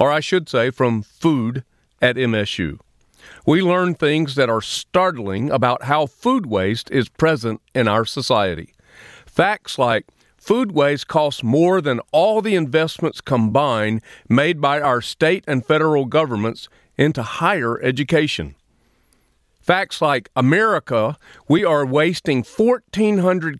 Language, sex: English, male